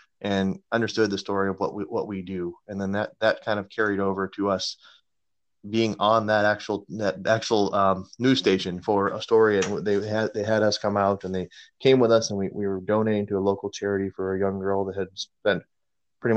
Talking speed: 225 wpm